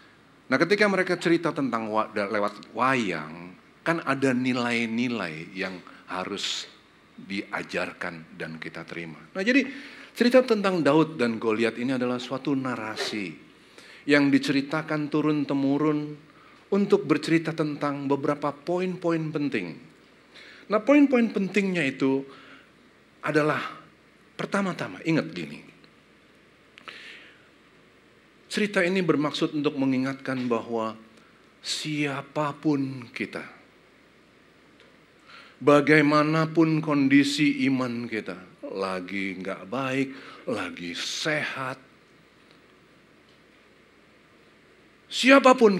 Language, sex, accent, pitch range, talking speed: Indonesian, male, native, 120-170 Hz, 85 wpm